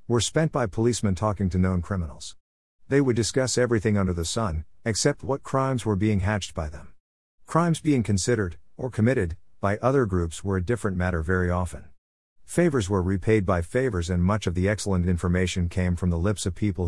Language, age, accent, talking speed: English, 50-69, American, 190 wpm